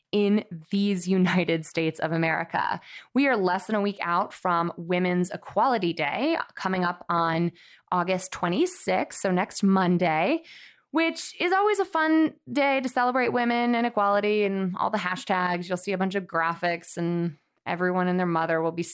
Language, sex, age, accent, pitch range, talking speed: English, female, 20-39, American, 170-230 Hz, 170 wpm